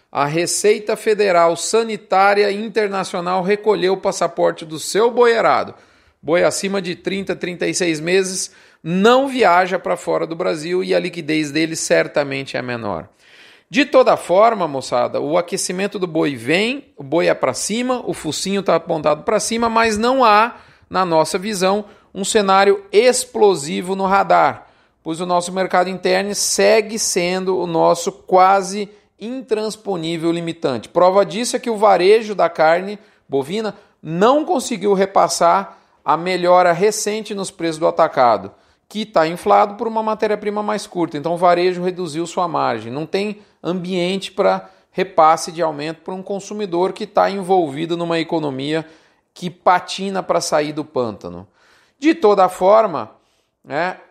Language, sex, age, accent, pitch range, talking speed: Portuguese, male, 40-59, Brazilian, 170-210 Hz, 145 wpm